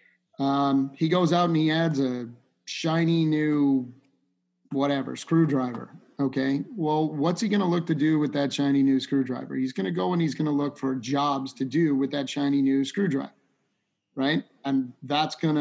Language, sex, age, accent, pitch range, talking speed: English, male, 30-49, American, 135-155 Hz, 185 wpm